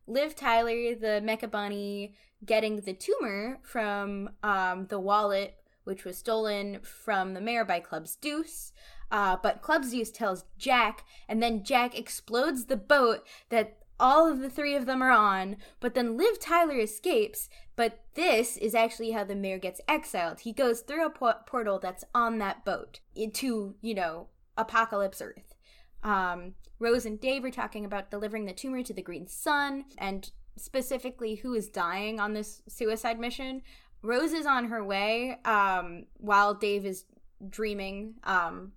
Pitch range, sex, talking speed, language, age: 205-255 Hz, female, 160 wpm, English, 10-29